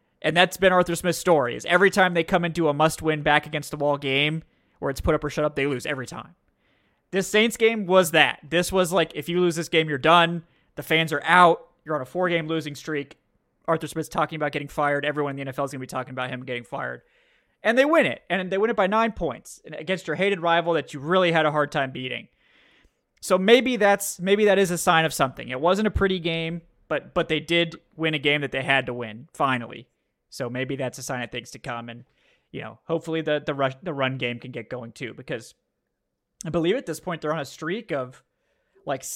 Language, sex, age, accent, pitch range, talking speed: English, male, 20-39, American, 140-180 Hz, 240 wpm